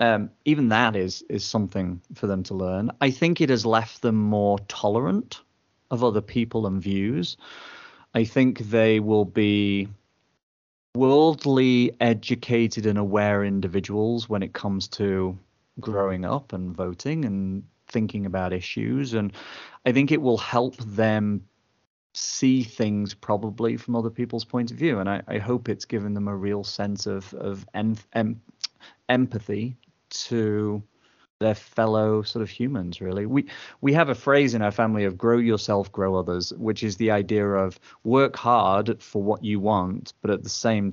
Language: English